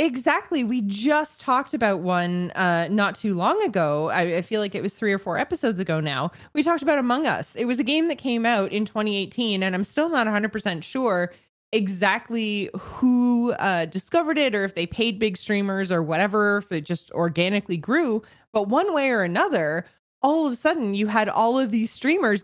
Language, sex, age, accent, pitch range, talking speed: English, female, 20-39, American, 190-255 Hz, 205 wpm